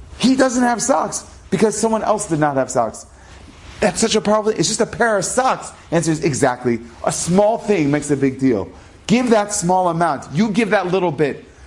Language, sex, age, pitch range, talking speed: English, male, 30-49, 135-215 Hz, 205 wpm